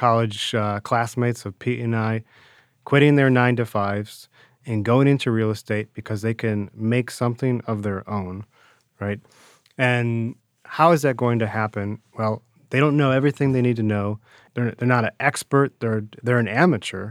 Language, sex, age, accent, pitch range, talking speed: English, male, 30-49, American, 105-125 Hz, 180 wpm